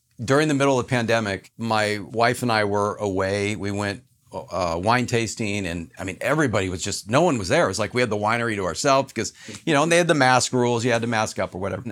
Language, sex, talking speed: English, male, 260 wpm